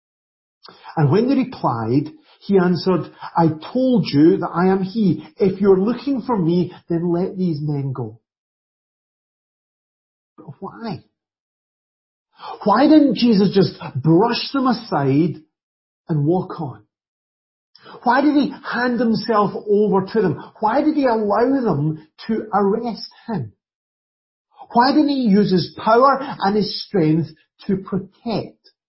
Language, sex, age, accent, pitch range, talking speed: English, male, 50-69, British, 155-220 Hz, 130 wpm